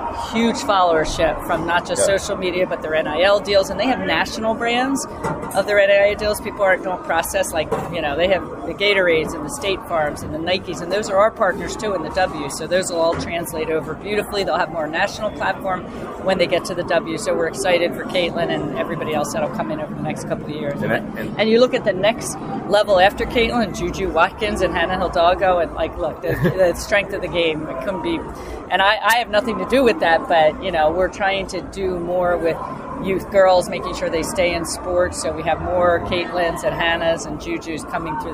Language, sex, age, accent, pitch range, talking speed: English, female, 40-59, American, 170-200 Hz, 225 wpm